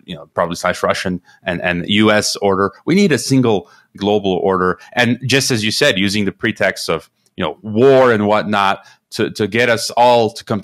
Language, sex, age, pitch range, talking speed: English, male, 30-49, 95-115 Hz, 195 wpm